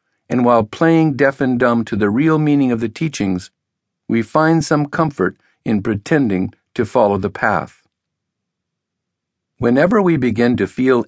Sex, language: male, English